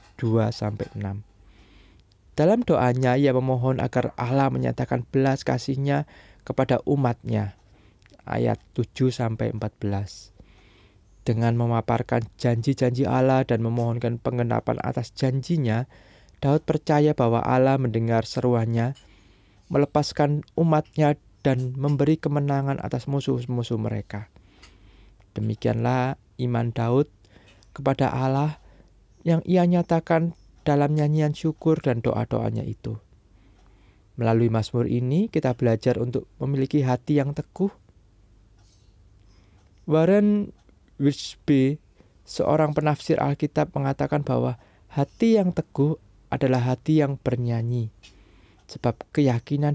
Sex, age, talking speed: male, 20-39, 95 wpm